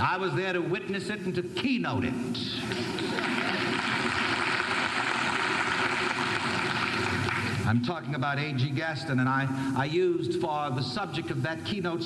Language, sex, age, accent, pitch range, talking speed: English, male, 60-79, American, 120-165 Hz, 125 wpm